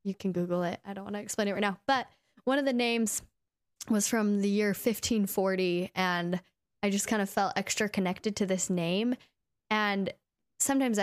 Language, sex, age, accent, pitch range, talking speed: English, female, 10-29, American, 185-215 Hz, 190 wpm